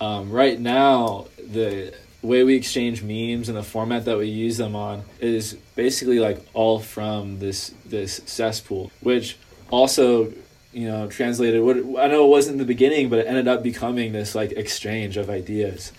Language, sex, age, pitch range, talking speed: English, male, 20-39, 105-130 Hz, 180 wpm